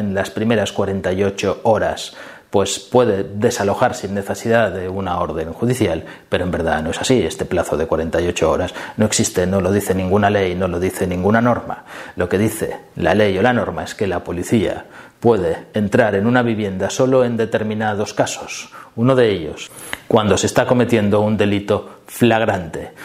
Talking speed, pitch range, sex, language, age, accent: 175 wpm, 95-115 Hz, male, Spanish, 30-49, Spanish